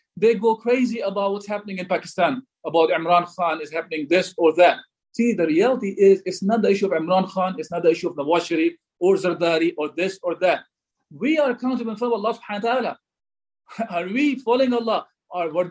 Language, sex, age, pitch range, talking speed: English, male, 40-59, 175-230 Hz, 205 wpm